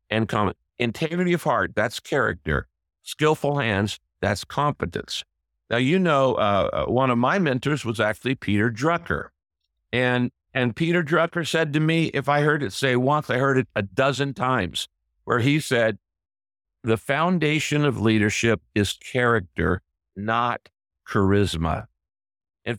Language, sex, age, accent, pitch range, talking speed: English, male, 60-79, American, 105-135 Hz, 140 wpm